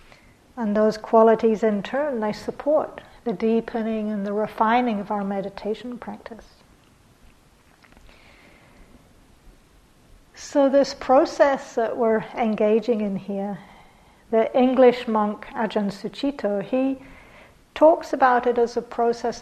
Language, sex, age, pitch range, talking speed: English, female, 60-79, 210-245 Hz, 110 wpm